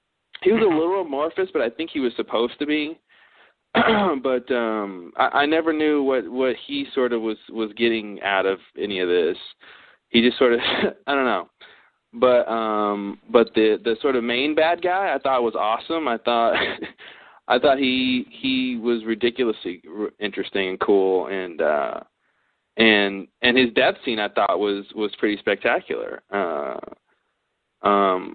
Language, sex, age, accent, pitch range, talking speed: English, male, 20-39, American, 115-165 Hz, 165 wpm